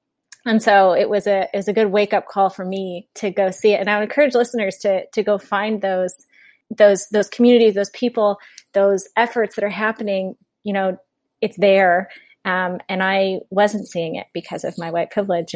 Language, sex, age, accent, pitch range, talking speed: English, female, 20-39, American, 190-215 Hz, 205 wpm